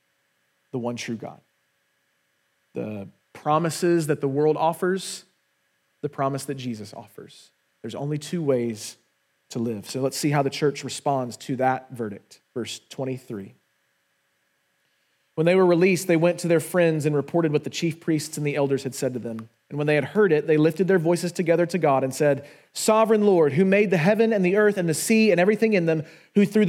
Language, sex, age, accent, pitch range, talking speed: English, male, 30-49, American, 145-190 Hz, 200 wpm